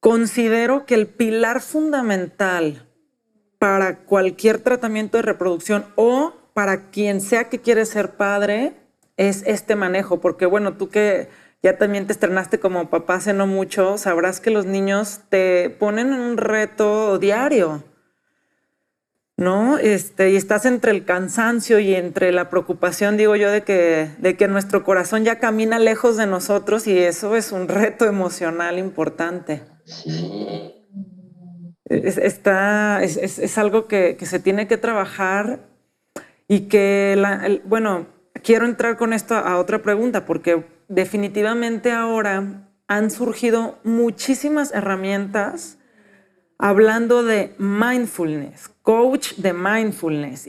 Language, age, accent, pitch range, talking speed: Spanish, 40-59, Mexican, 185-225 Hz, 130 wpm